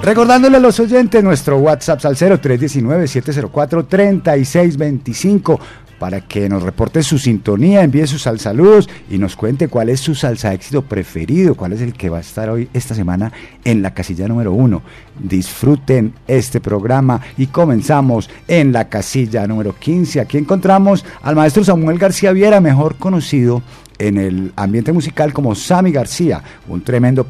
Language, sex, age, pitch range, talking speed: Spanish, male, 50-69, 110-155 Hz, 150 wpm